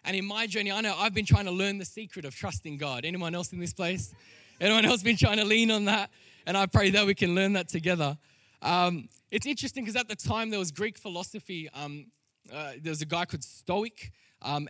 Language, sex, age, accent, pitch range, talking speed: English, male, 20-39, Australian, 140-210 Hz, 235 wpm